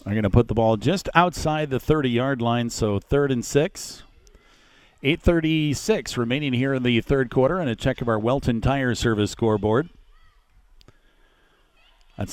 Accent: American